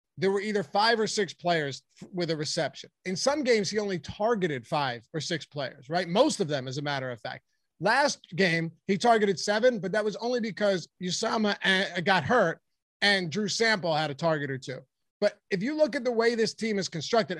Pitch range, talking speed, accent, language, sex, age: 170-225 Hz, 210 wpm, American, English, male, 30-49